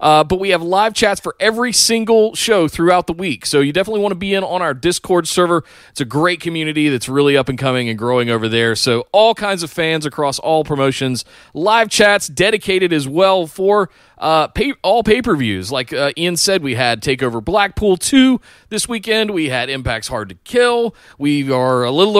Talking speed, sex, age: 205 wpm, male, 30-49